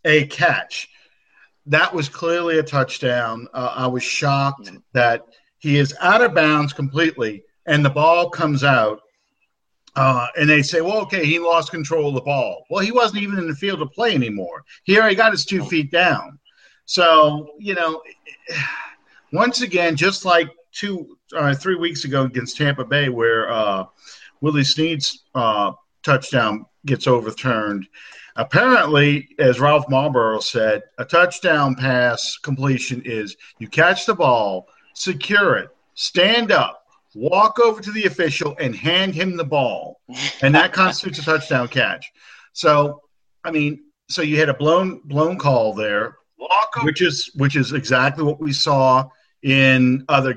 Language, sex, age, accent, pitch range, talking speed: English, male, 50-69, American, 130-170 Hz, 155 wpm